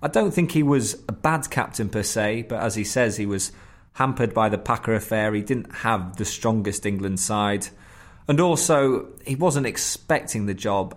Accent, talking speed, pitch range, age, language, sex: British, 190 wpm, 105-130 Hz, 20-39, English, male